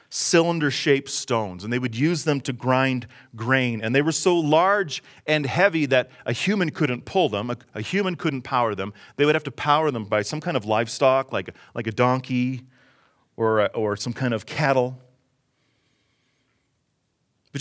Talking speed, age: 175 wpm, 40-59